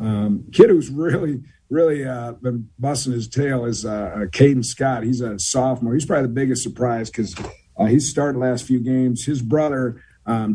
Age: 50-69